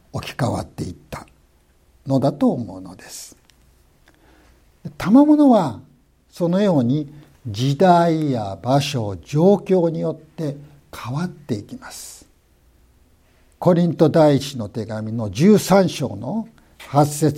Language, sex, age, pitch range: Japanese, male, 60-79, 115-185 Hz